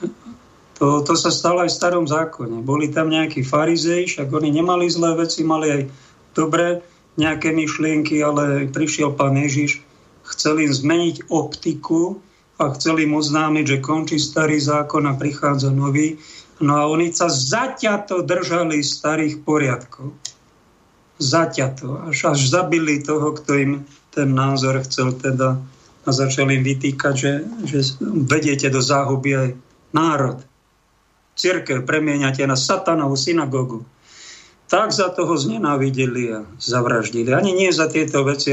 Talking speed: 135 wpm